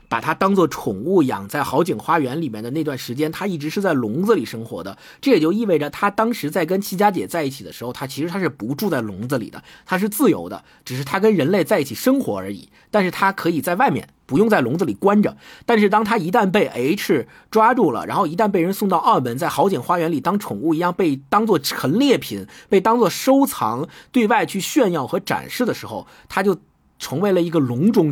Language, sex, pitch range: Chinese, male, 145-210 Hz